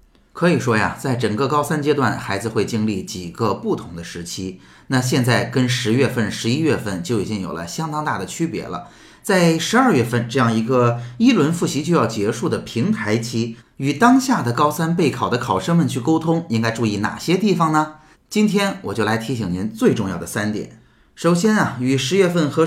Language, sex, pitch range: Chinese, male, 110-160 Hz